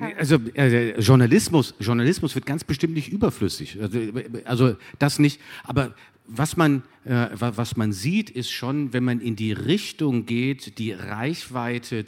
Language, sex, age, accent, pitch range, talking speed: German, male, 50-69, German, 110-145 Hz, 155 wpm